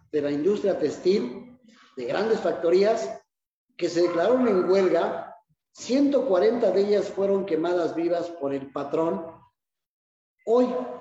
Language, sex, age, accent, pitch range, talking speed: Spanish, male, 40-59, Mexican, 160-230 Hz, 120 wpm